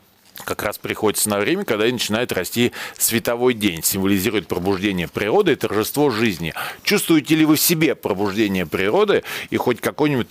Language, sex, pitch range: Russian, male, 105-145 Hz